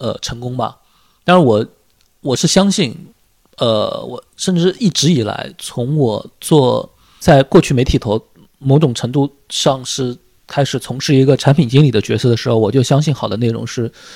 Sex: male